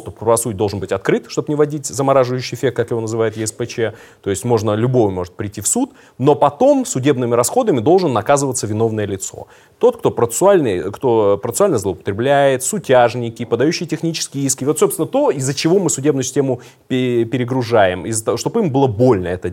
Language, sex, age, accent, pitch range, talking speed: Russian, male, 30-49, native, 110-145 Hz, 165 wpm